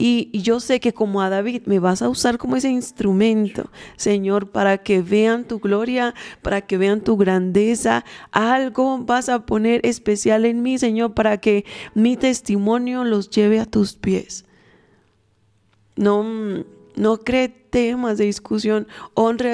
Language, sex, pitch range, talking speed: Spanish, female, 200-245 Hz, 150 wpm